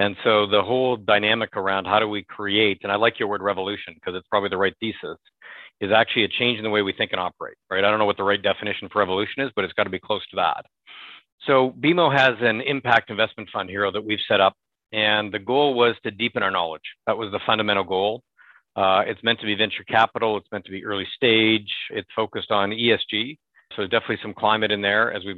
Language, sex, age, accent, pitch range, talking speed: English, male, 50-69, American, 100-115 Hz, 245 wpm